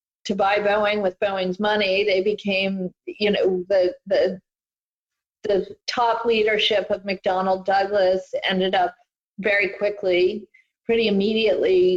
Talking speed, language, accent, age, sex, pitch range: 120 wpm, English, American, 50-69, female, 190-220 Hz